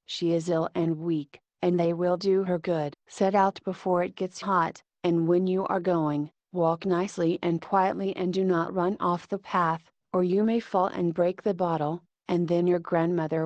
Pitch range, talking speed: 165-190 Hz, 200 wpm